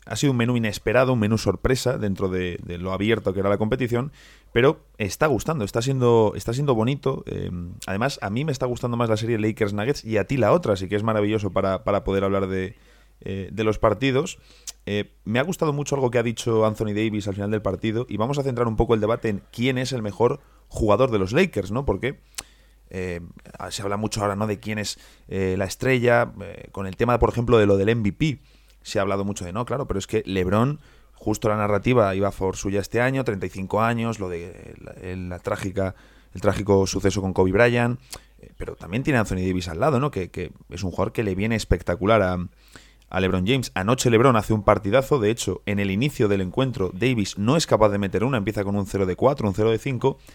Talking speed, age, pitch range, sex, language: 230 wpm, 30-49, 95-120 Hz, male, Spanish